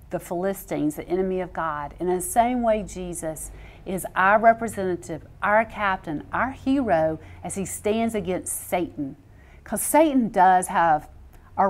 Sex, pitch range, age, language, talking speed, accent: female, 170-230 Hz, 50-69, English, 145 wpm, American